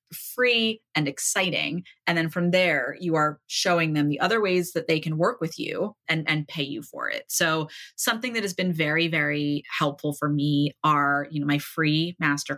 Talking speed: 200 wpm